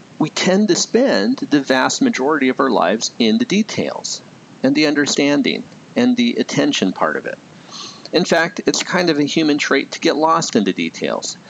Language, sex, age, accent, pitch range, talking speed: English, male, 50-69, American, 135-225 Hz, 190 wpm